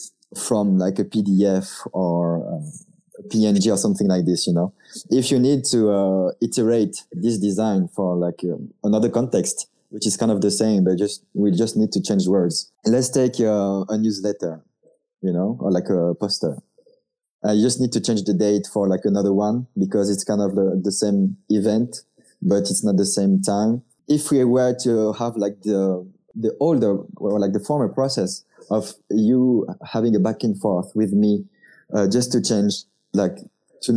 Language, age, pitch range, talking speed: English, 20-39, 100-125 Hz, 185 wpm